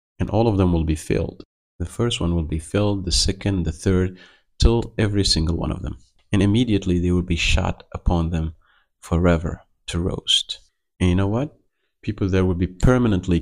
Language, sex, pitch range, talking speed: English, male, 80-95 Hz, 190 wpm